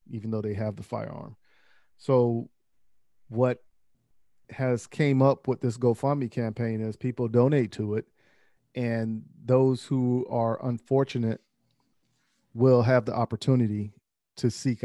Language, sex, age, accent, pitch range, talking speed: English, male, 40-59, American, 110-130 Hz, 125 wpm